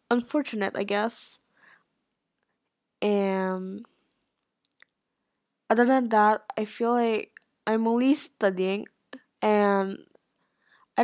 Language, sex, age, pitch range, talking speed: English, female, 10-29, 205-245 Hz, 80 wpm